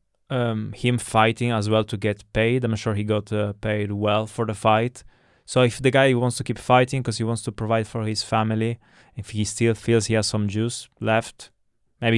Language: English